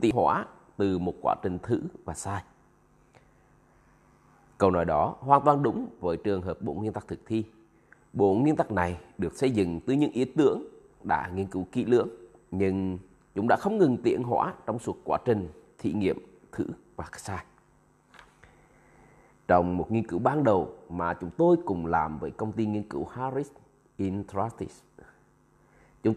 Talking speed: 170 wpm